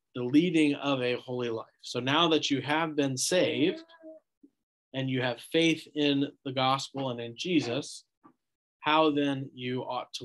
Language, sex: English, male